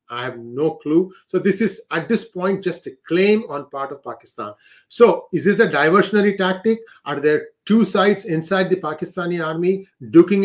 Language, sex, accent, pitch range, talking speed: English, male, Indian, 155-200 Hz, 185 wpm